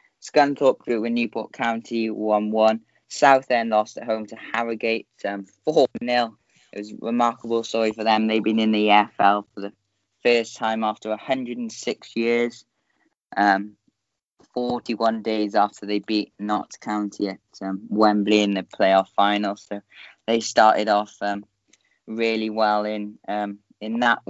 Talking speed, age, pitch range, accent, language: 145 wpm, 10-29, 105-120 Hz, British, English